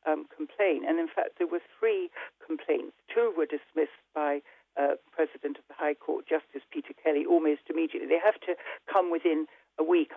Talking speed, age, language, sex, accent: 185 wpm, 60-79, English, female, British